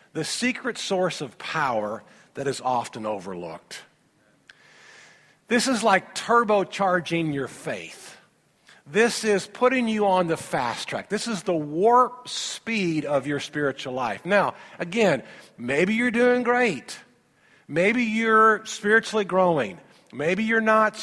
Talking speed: 130 wpm